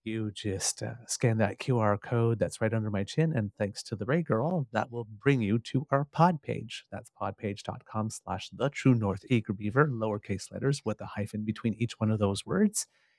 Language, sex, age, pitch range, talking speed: English, male, 30-49, 105-130 Hz, 205 wpm